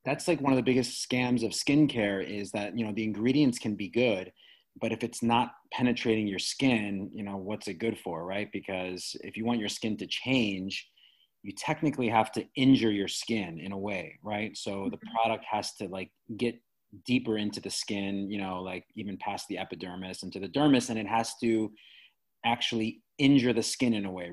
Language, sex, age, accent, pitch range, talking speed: English, male, 30-49, American, 100-120 Hz, 205 wpm